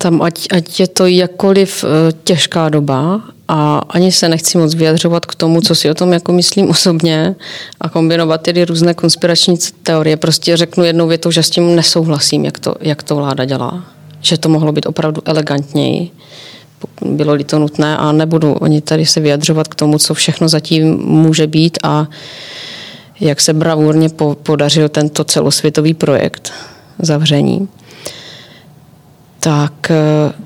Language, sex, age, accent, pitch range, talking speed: Czech, female, 30-49, native, 150-170 Hz, 150 wpm